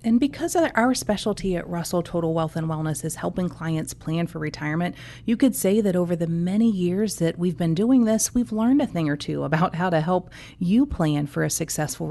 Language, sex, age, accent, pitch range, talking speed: English, female, 30-49, American, 155-205 Hz, 225 wpm